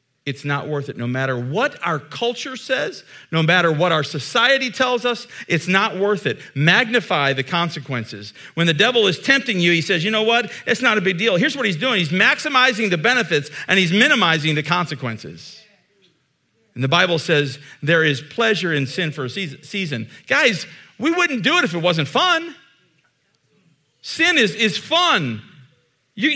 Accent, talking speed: American, 180 wpm